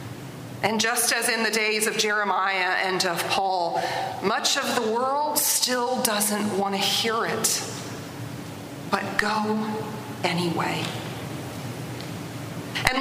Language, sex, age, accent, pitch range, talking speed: English, female, 40-59, American, 190-245 Hz, 115 wpm